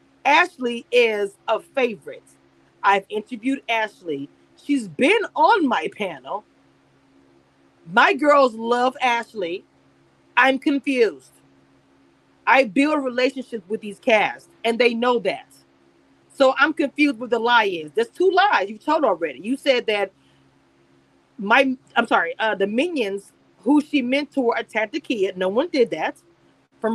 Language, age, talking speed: English, 40-59, 135 wpm